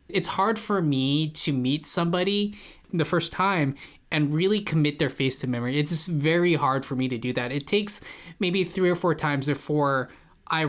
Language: English